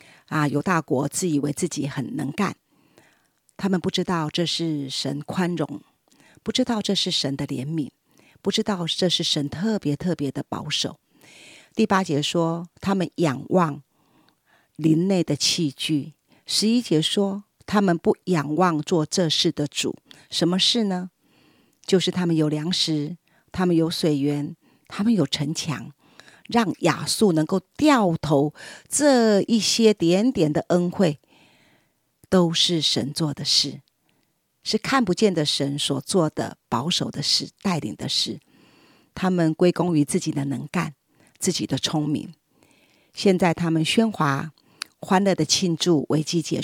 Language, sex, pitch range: Chinese, female, 150-190 Hz